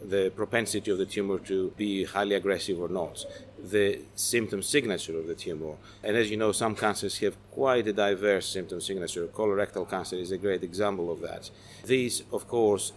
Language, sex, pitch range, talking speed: English, male, 95-110 Hz, 185 wpm